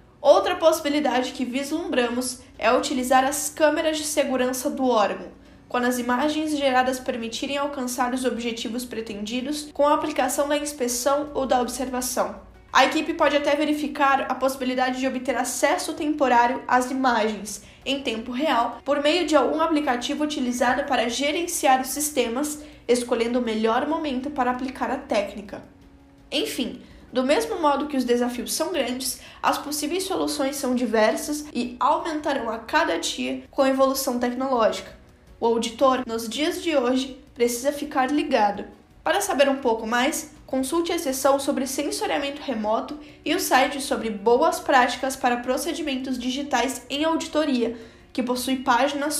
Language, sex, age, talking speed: Portuguese, female, 10-29, 145 wpm